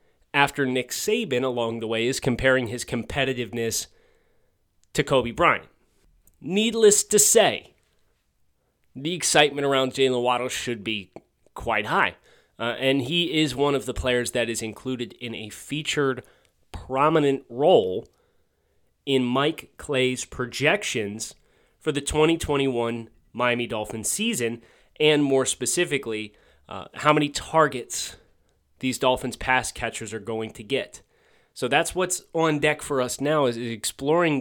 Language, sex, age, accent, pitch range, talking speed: English, male, 30-49, American, 120-160 Hz, 135 wpm